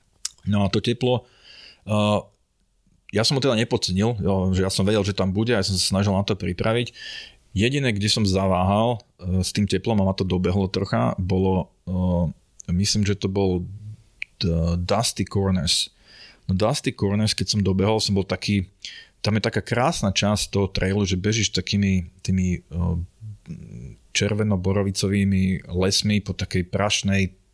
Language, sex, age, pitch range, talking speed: Slovak, male, 30-49, 95-105 Hz, 160 wpm